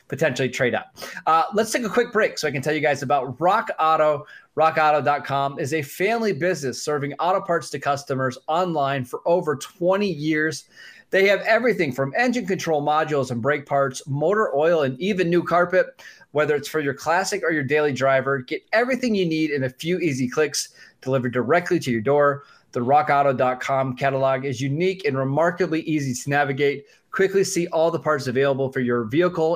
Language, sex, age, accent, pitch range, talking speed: English, male, 20-39, American, 135-175 Hz, 185 wpm